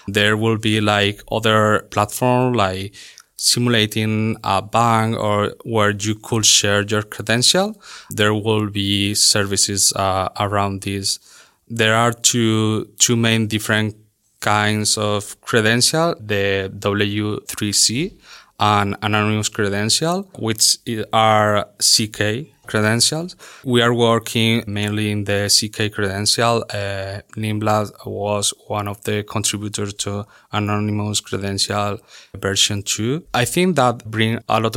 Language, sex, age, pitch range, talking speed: English, male, 20-39, 105-115 Hz, 115 wpm